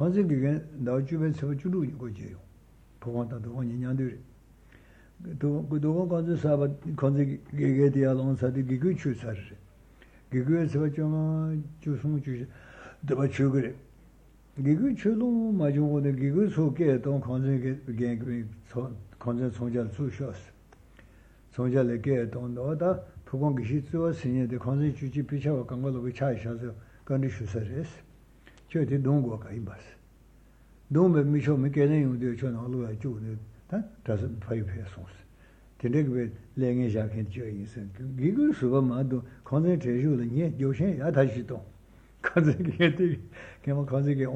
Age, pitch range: 60-79, 120-145 Hz